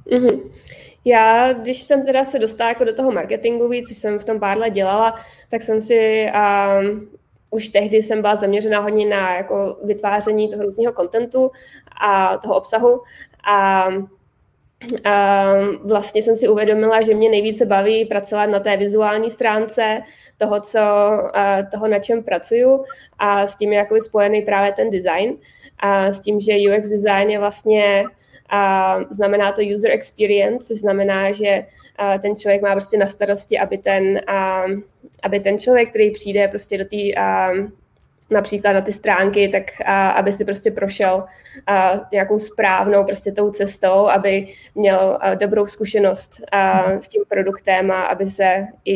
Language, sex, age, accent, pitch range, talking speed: Czech, female, 20-39, native, 195-215 Hz, 155 wpm